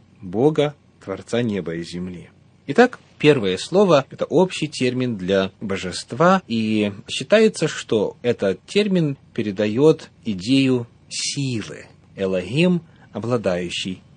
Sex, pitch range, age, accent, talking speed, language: male, 115-160 Hz, 30-49, native, 100 wpm, Russian